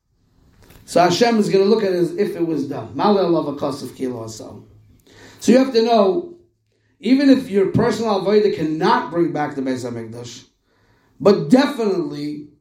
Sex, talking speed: male, 150 wpm